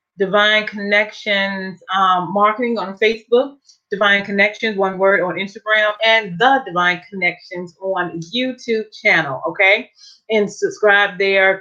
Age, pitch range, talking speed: 30-49, 180-225 Hz, 120 wpm